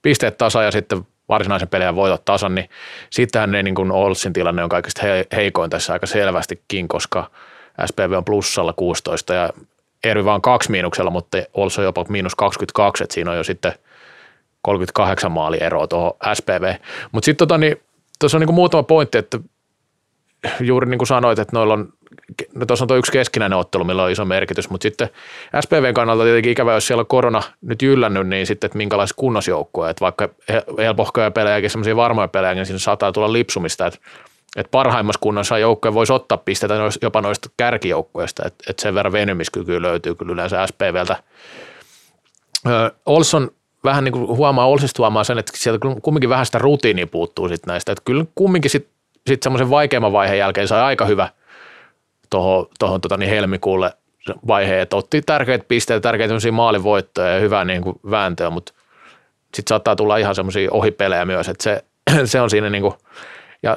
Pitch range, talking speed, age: 100-130 Hz, 170 wpm, 30-49